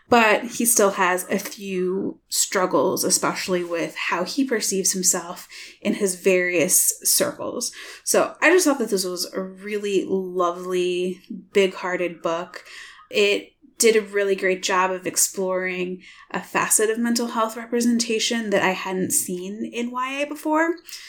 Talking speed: 145 wpm